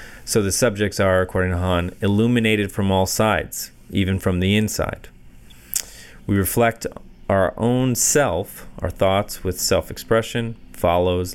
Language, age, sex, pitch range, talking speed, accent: English, 30-49, male, 90-105 Hz, 130 wpm, American